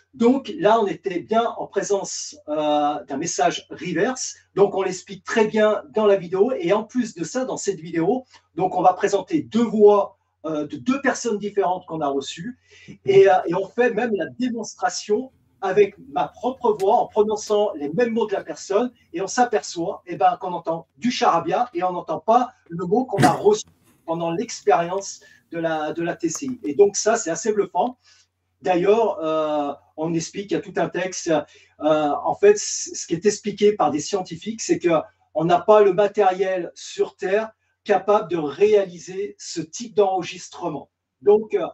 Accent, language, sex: French, French, male